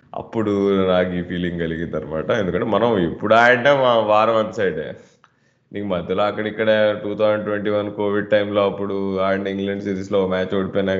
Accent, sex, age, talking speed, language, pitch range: native, male, 20-39, 160 wpm, Telugu, 90-110 Hz